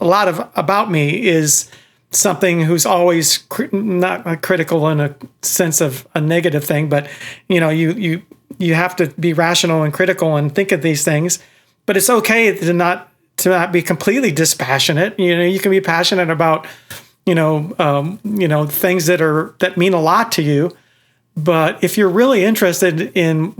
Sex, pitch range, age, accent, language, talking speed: male, 160-190 Hz, 40-59, American, English, 190 wpm